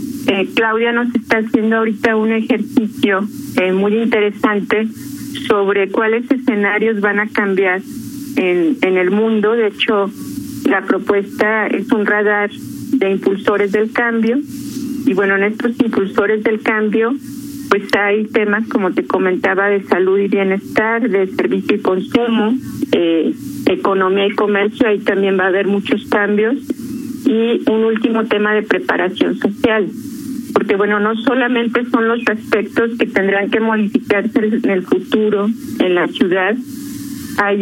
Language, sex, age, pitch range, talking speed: Spanish, female, 50-69, 205-260 Hz, 140 wpm